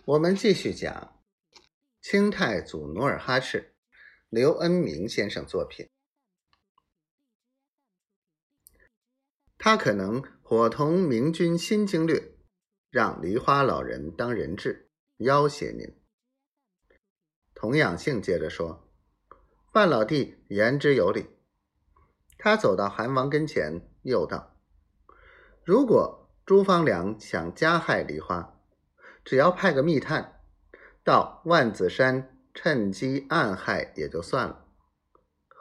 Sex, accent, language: male, native, Chinese